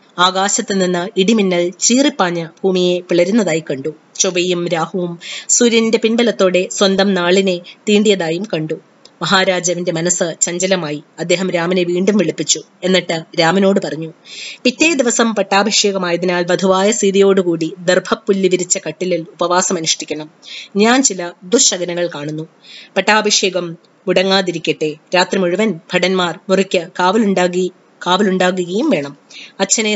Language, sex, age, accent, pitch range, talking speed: English, female, 20-39, Indian, 175-215 Hz, 80 wpm